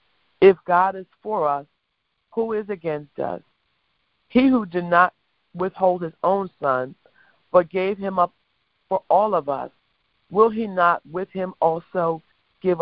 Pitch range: 170-210 Hz